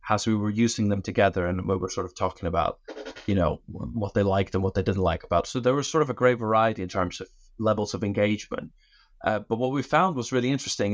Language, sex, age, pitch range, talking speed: English, male, 20-39, 95-115 Hz, 250 wpm